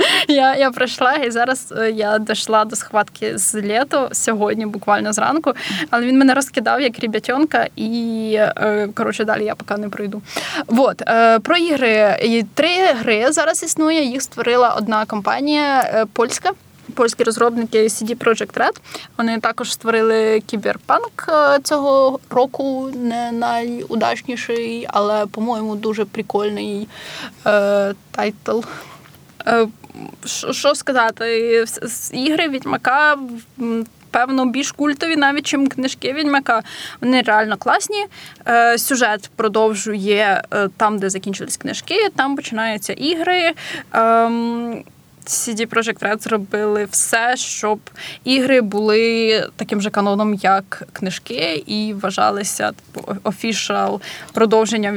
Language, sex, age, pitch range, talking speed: Ukrainian, female, 10-29, 215-265 Hz, 105 wpm